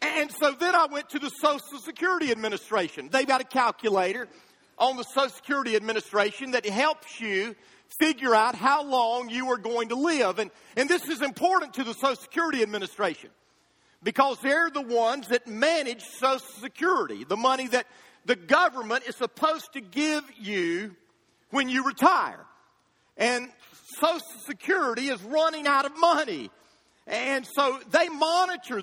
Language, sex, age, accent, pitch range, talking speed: English, male, 40-59, American, 240-310 Hz, 155 wpm